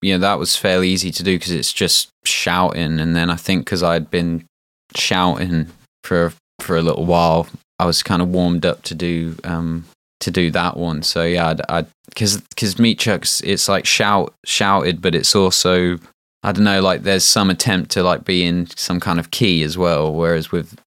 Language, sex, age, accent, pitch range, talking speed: English, male, 20-39, British, 80-90 Hz, 215 wpm